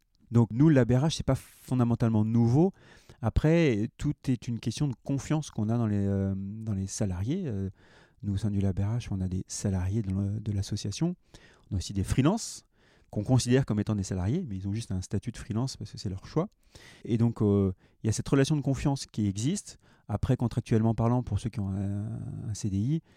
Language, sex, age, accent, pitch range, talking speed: French, male, 30-49, French, 100-125 Hz, 210 wpm